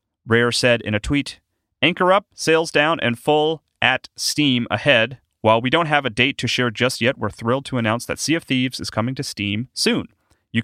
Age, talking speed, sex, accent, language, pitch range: 30-49, 215 wpm, male, American, English, 100-125 Hz